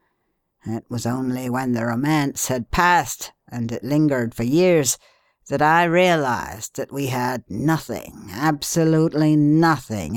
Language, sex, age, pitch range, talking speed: English, female, 60-79, 125-150 Hz, 130 wpm